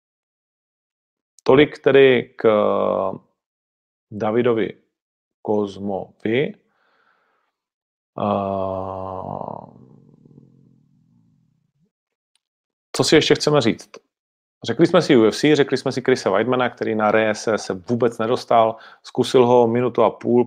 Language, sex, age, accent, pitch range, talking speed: Czech, male, 40-59, native, 105-120 Hz, 90 wpm